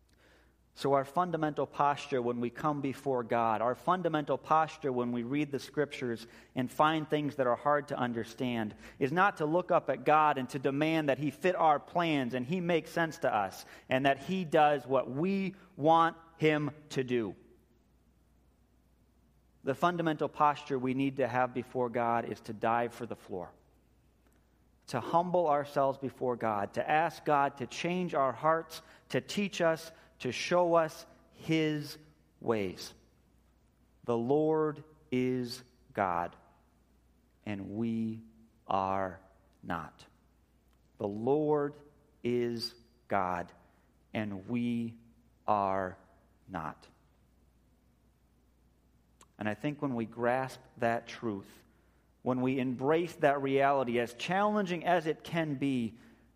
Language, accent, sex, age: English, American, male, 40-59